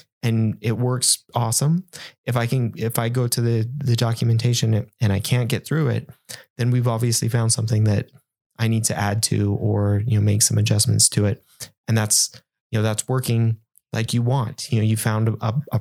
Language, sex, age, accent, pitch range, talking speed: English, male, 20-39, American, 110-130 Hz, 205 wpm